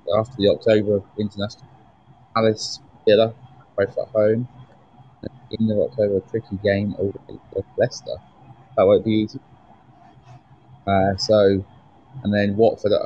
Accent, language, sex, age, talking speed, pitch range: British, English, male, 20-39, 125 wpm, 105-130 Hz